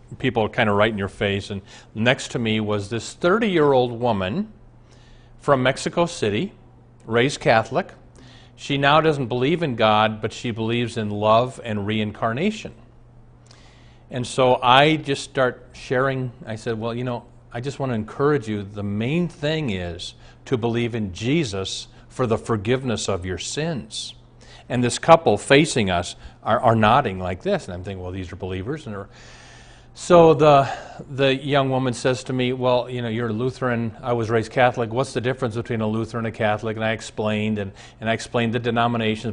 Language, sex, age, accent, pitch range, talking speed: English, male, 40-59, American, 110-130 Hz, 185 wpm